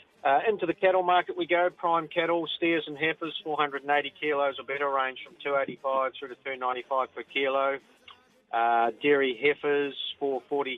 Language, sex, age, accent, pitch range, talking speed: English, male, 40-59, Australian, 130-165 Hz, 155 wpm